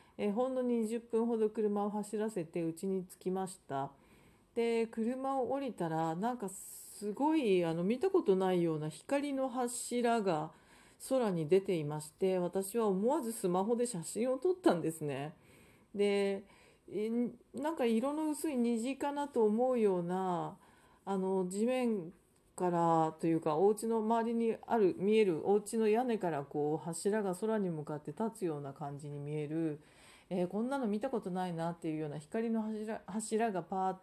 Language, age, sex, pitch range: Japanese, 40-59, female, 175-235 Hz